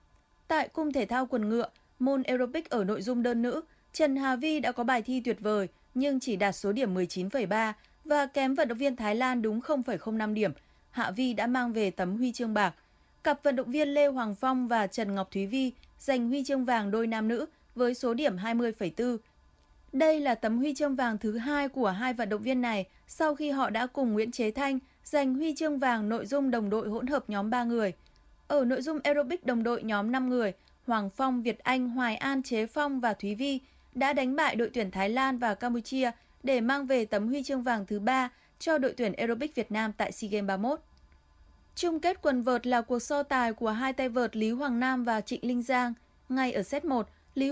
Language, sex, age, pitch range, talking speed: Vietnamese, female, 20-39, 225-275 Hz, 225 wpm